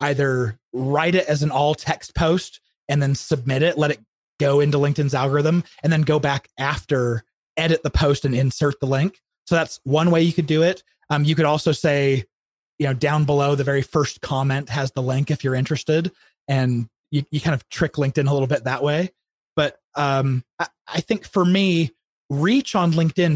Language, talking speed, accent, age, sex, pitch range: English, 205 wpm, American, 30-49, male, 130-160 Hz